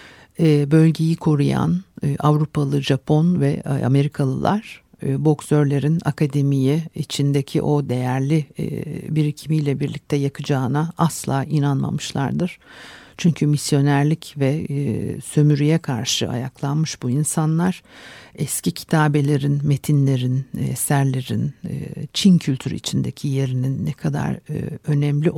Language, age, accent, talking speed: Turkish, 60-79, native, 85 wpm